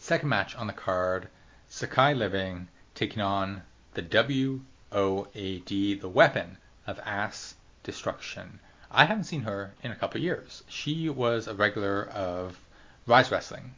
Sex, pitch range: male, 95-120 Hz